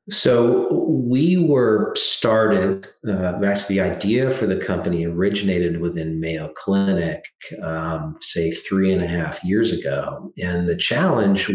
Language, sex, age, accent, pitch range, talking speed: English, male, 40-59, American, 85-105 Hz, 135 wpm